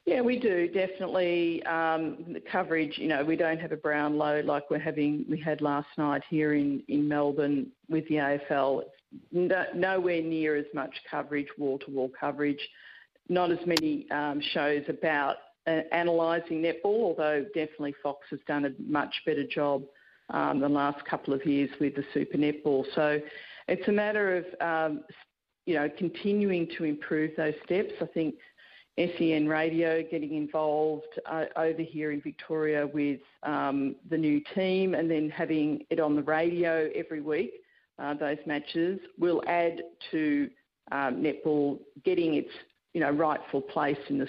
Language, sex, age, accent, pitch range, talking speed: English, female, 50-69, Australian, 145-165 Hz, 165 wpm